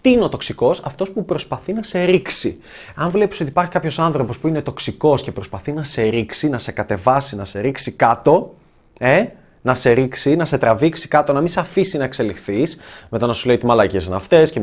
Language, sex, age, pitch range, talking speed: Greek, male, 20-39, 110-185 Hz, 220 wpm